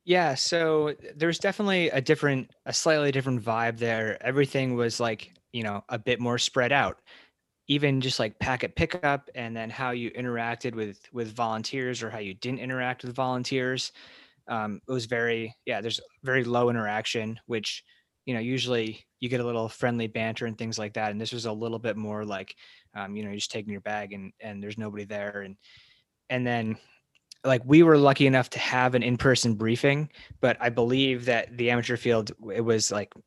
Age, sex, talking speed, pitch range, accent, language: 20-39, male, 195 wpm, 110-130 Hz, American, English